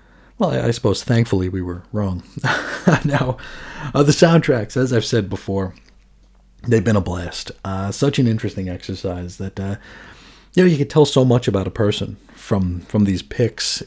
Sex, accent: male, American